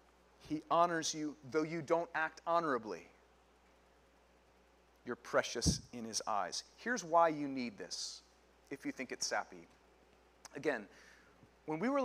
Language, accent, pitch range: English, American, 130-180 Hz